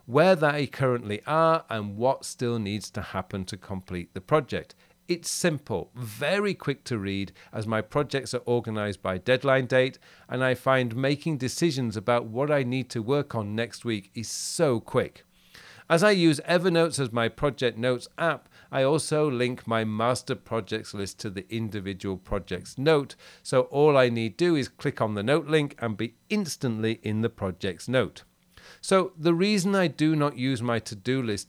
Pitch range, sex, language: 110-150 Hz, male, English